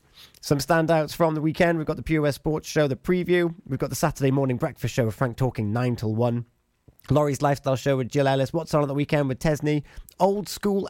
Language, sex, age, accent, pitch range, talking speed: English, male, 30-49, British, 110-150 Hz, 225 wpm